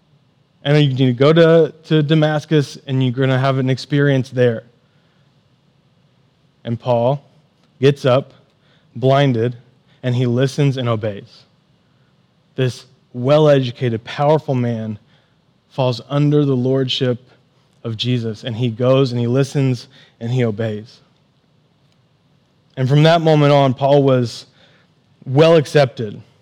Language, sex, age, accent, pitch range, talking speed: English, male, 20-39, American, 130-150 Hz, 120 wpm